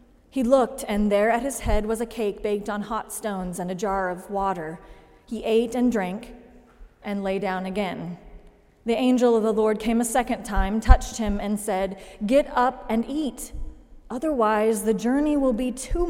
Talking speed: 185 wpm